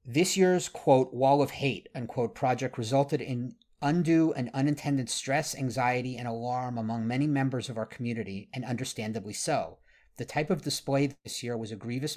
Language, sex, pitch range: English, male, 115-135 Hz